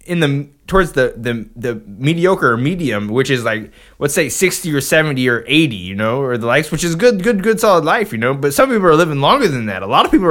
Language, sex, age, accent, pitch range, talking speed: English, male, 20-39, American, 140-230 Hz, 255 wpm